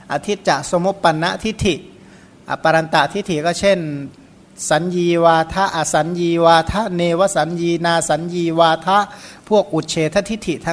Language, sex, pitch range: Thai, male, 155-190 Hz